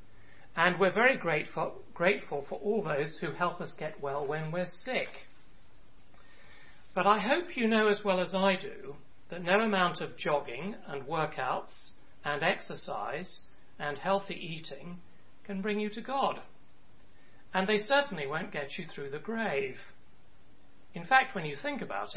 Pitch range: 145-200 Hz